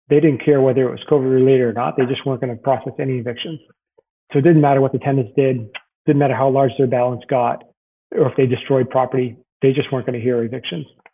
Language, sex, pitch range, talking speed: English, male, 130-150 Hz, 235 wpm